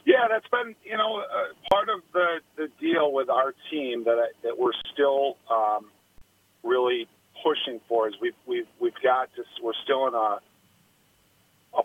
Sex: male